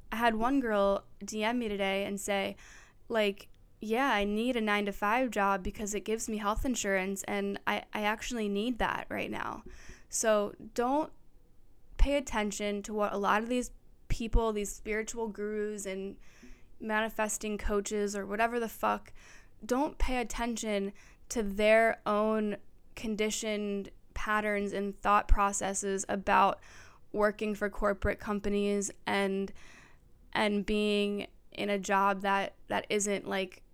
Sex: female